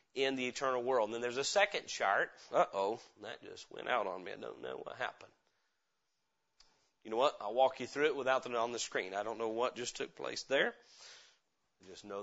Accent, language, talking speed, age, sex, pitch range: American, English, 230 wpm, 30-49, male, 120-160 Hz